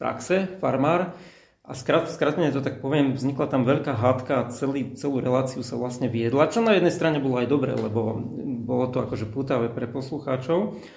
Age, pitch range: 40-59, 130-155 Hz